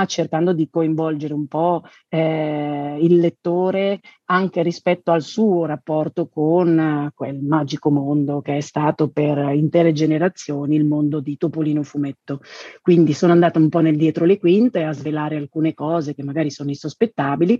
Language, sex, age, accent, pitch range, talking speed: Italian, female, 40-59, native, 155-205 Hz, 160 wpm